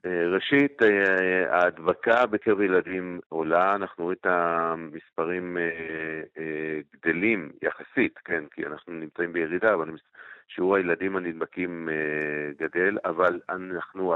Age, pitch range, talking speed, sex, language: 50-69, 85-100 Hz, 100 wpm, male, English